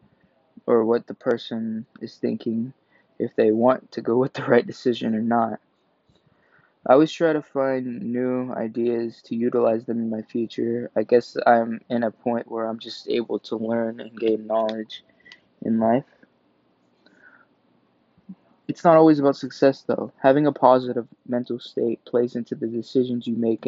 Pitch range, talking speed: 115-130 Hz, 160 wpm